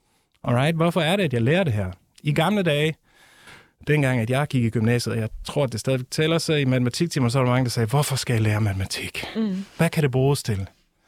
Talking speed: 240 wpm